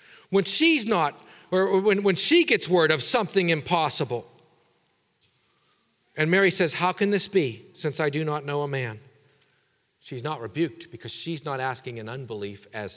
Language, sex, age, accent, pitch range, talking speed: English, male, 40-59, American, 120-165 Hz, 165 wpm